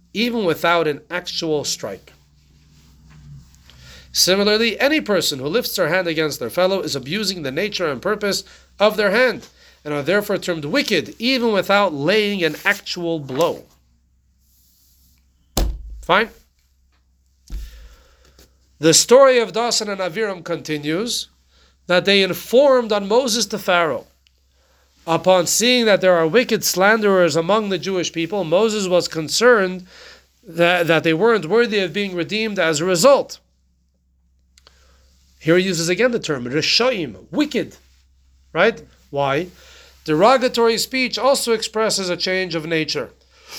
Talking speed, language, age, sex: 130 wpm, English, 40-59, male